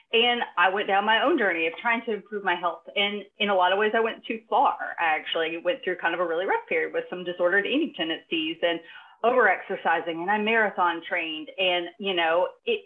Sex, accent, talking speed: female, American, 225 wpm